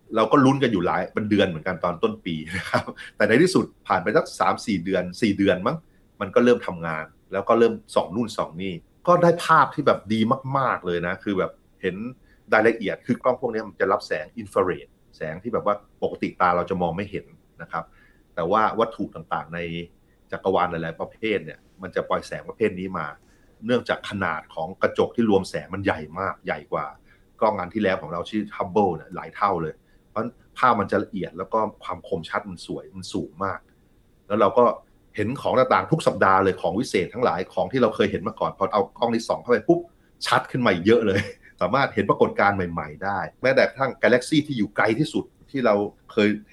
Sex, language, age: male, Thai, 30-49